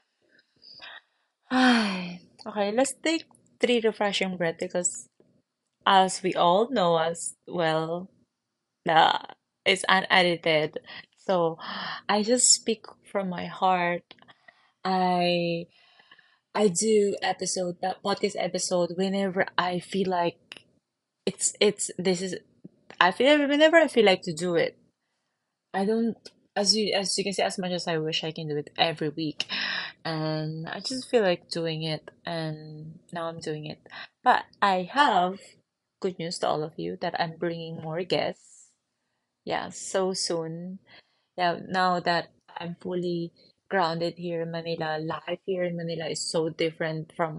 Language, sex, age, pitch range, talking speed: English, female, 20-39, 165-195 Hz, 140 wpm